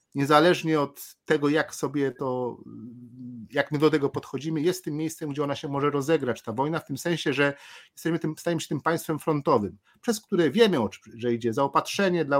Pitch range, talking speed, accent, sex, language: 140-190 Hz, 190 wpm, native, male, Polish